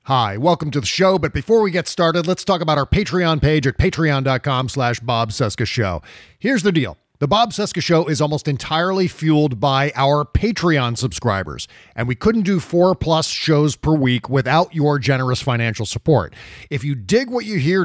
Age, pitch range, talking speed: 40-59, 130-175 Hz, 190 wpm